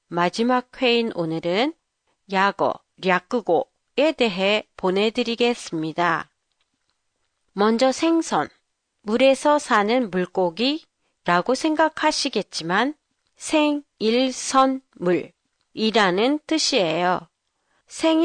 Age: 40-59